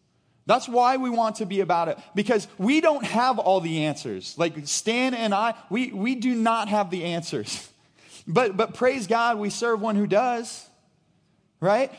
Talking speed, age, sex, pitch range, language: 180 wpm, 30-49, male, 200-255 Hz, English